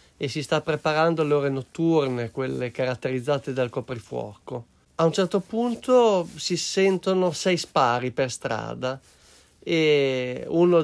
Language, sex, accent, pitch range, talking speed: Italian, male, native, 130-170 Hz, 125 wpm